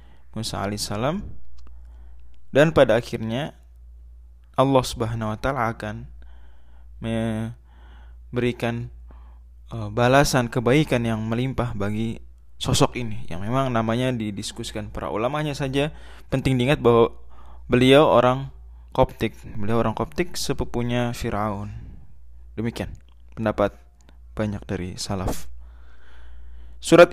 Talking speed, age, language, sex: 95 wpm, 20-39, Indonesian, male